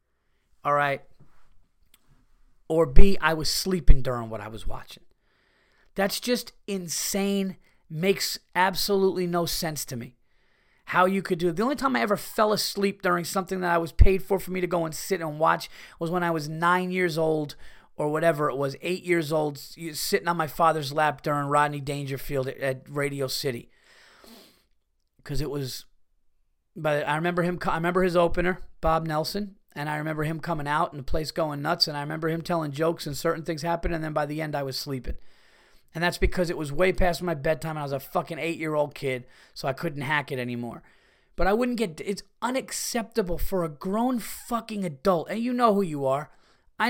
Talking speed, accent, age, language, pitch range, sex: 200 wpm, American, 30-49, English, 145-185 Hz, male